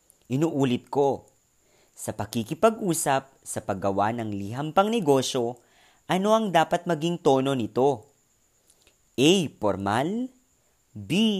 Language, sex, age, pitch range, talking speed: Filipino, female, 30-49, 110-170 Hz, 100 wpm